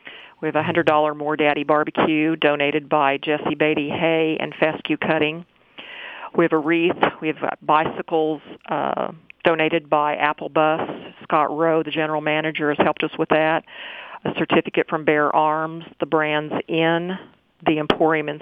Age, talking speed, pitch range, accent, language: 50-69, 155 wpm, 150-165 Hz, American, English